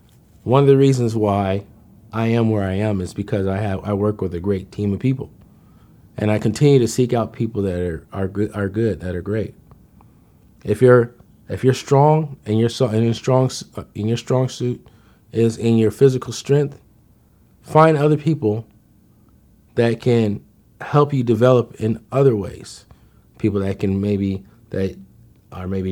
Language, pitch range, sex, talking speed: English, 100-120 Hz, male, 180 wpm